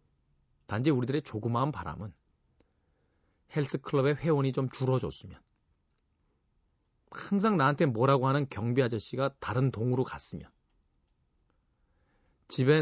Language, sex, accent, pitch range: Korean, male, native, 90-140 Hz